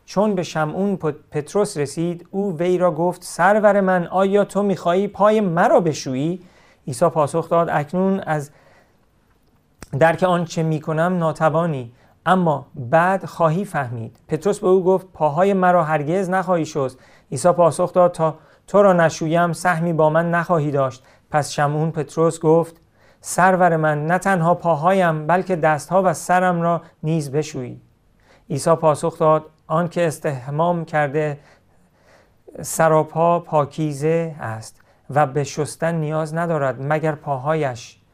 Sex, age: male, 40-59